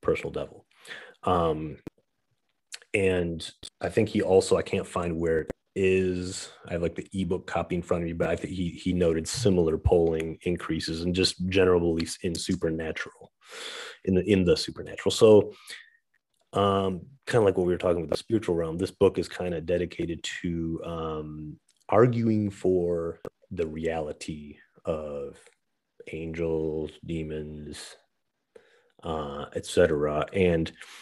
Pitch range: 80-95 Hz